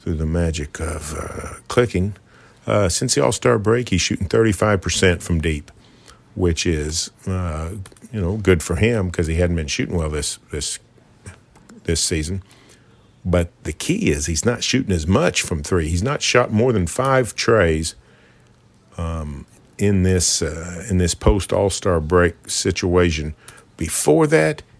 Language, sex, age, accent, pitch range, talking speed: English, male, 50-69, American, 80-105 Hz, 155 wpm